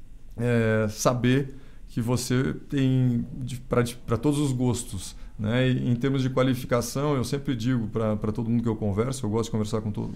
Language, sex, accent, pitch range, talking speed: Portuguese, male, Brazilian, 110-130 Hz, 175 wpm